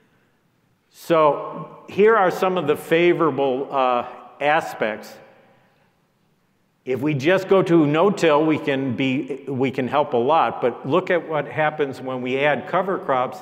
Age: 50-69